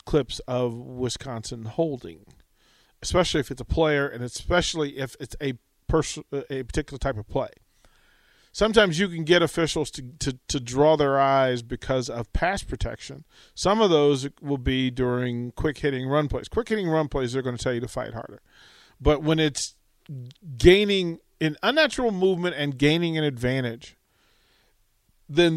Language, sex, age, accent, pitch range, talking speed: English, male, 40-59, American, 125-160 Hz, 155 wpm